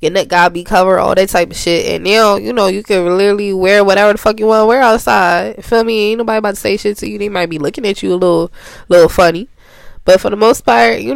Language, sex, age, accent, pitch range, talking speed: English, female, 20-39, American, 200-270 Hz, 285 wpm